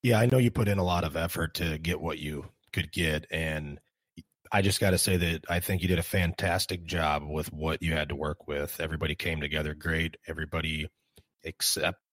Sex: male